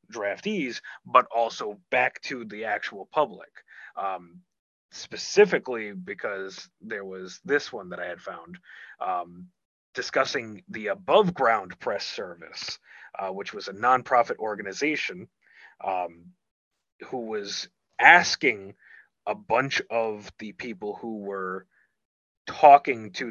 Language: English